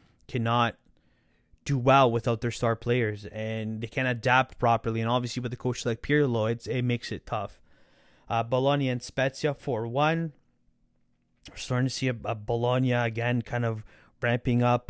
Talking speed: 170 wpm